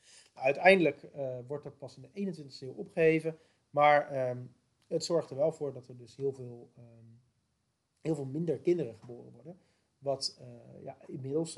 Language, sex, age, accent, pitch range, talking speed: Dutch, male, 40-59, Dutch, 125-160 Hz, 170 wpm